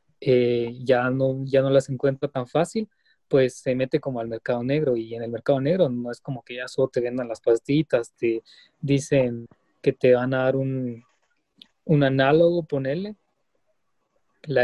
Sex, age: male, 20-39